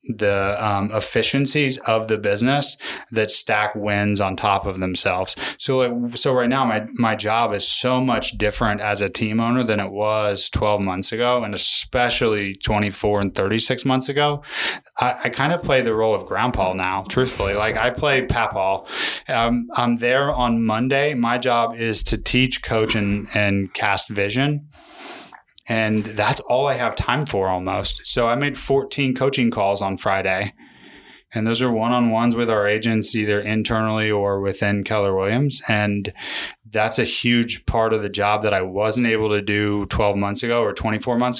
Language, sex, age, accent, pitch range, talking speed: English, male, 20-39, American, 100-120 Hz, 175 wpm